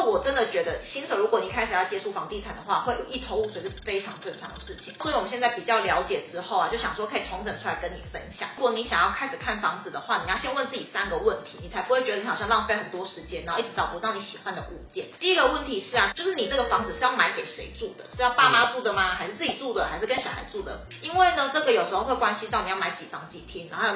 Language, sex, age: Chinese, female, 30-49